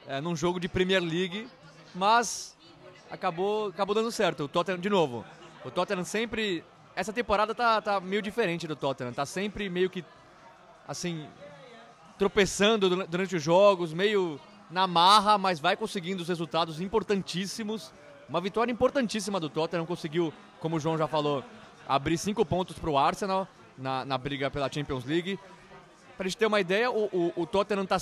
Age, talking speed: 20-39, 160 wpm